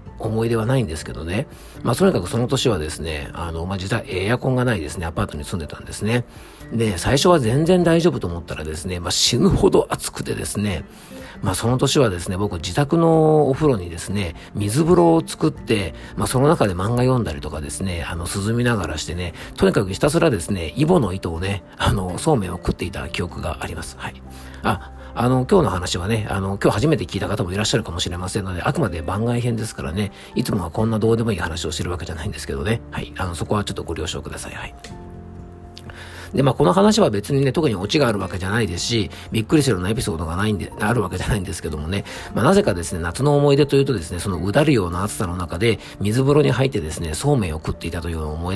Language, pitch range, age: Japanese, 85-125 Hz, 40-59